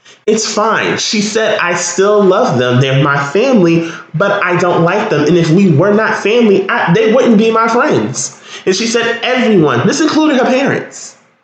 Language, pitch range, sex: English, 145-195 Hz, male